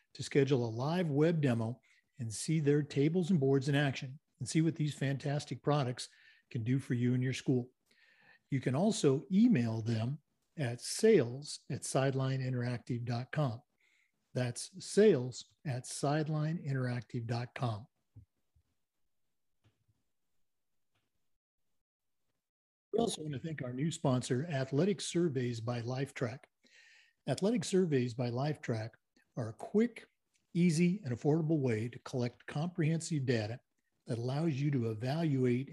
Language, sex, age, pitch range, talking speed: English, male, 50-69, 125-165 Hz, 120 wpm